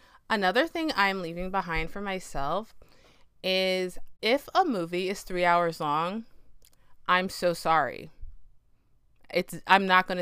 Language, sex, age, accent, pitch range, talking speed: English, female, 20-39, American, 165-195 Hz, 130 wpm